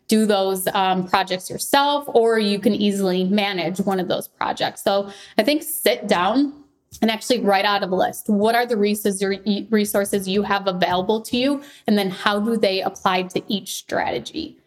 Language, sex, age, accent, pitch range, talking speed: English, female, 20-39, American, 195-230 Hz, 180 wpm